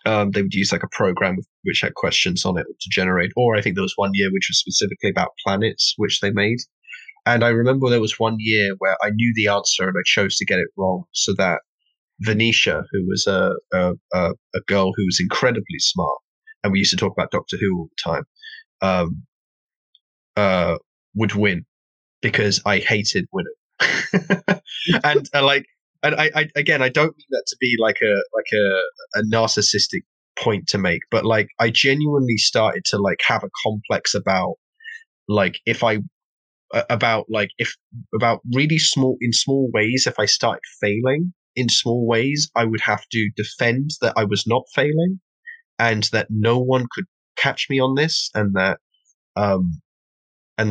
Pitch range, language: 105-160 Hz, English